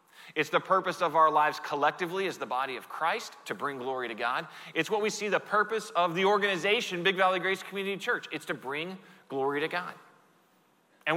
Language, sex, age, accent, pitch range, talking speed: English, male, 30-49, American, 165-215 Hz, 205 wpm